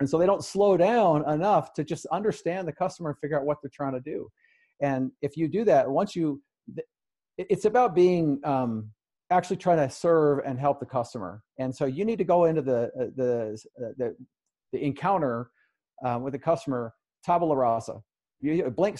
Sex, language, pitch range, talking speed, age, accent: male, English, 130-180 Hz, 175 wpm, 40-59, American